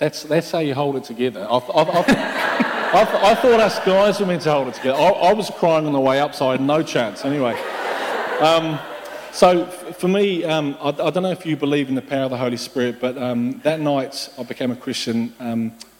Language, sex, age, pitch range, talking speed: English, male, 40-59, 125-155 Hz, 225 wpm